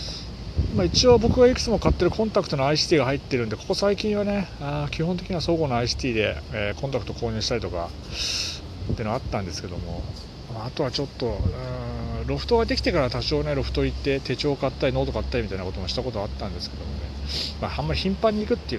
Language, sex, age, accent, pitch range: Japanese, male, 40-59, native, 95-135 Hz